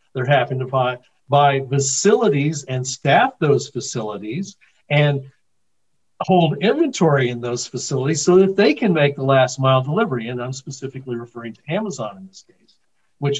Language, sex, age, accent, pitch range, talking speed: English, male, 50-69, American, 130-175 Hz, 155 wpm